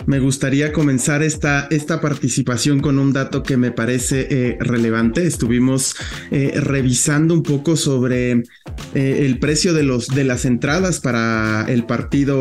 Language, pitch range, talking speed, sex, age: English, 125-150 Hz, 145 wpm, male, 20-39